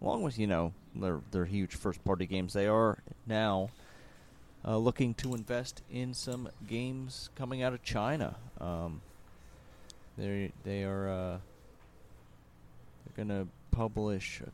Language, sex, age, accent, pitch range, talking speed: English, male, 30-49, American, 85-120 Hz, 140 wpm